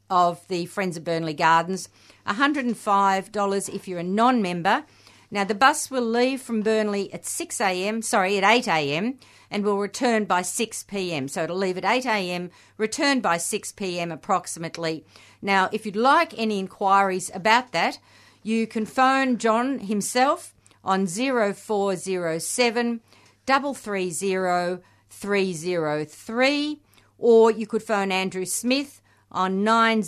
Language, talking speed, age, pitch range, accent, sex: English, 120 wpm, 50-69, 175-225 Hz, Australian, female